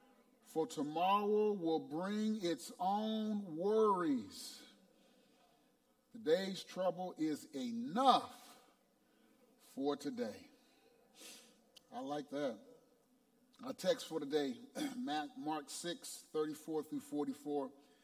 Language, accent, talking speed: English, American, 75 wpm